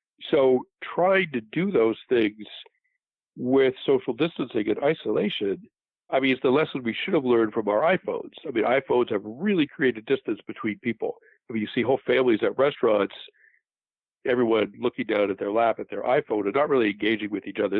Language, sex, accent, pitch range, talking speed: English, male, American, 110-170 Hz, 190 wpm